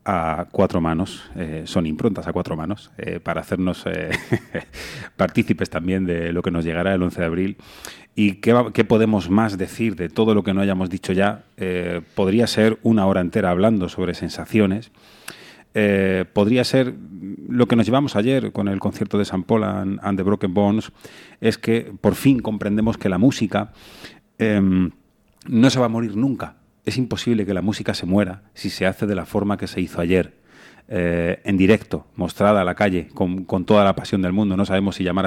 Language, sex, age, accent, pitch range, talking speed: Spanish, male, 30-49, Spanish, 90-110 Hz, 195 wpm